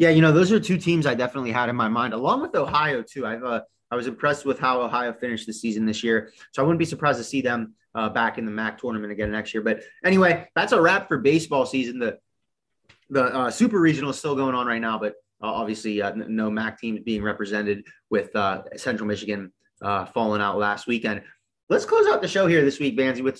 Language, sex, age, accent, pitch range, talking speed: English, male, 20-39, American, 110-150 Hz, 245 wpm